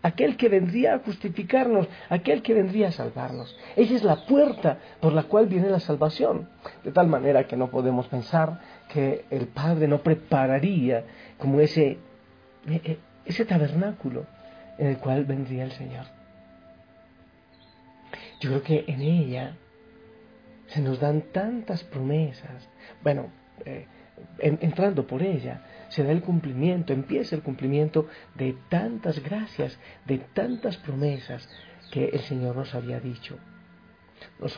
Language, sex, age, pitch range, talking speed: Spanish, male, 40-59, 135-180 Hz, 135 wpm